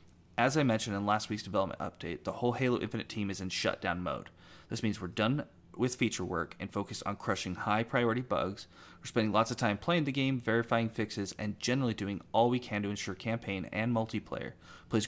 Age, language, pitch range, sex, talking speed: 30-49, English, 100-120 Hz, male, 205 wpm